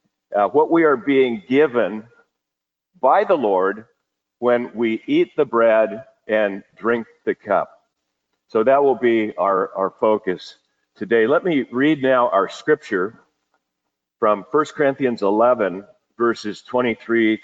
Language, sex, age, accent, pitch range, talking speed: English, male, 50-69, American, 105-135 Hz, 130 wpm